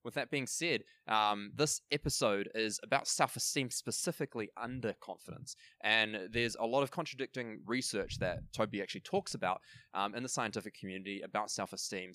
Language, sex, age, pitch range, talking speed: English, male, 20-39, 95-120 Hz, 160 wpm